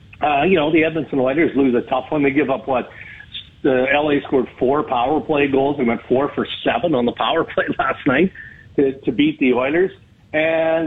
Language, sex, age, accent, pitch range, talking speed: English, male, 50-69, American, 120-150 Hz, 210 wpm